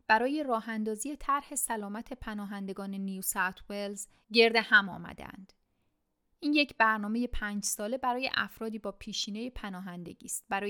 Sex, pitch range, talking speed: female, 195-245 Hz, 130 wpm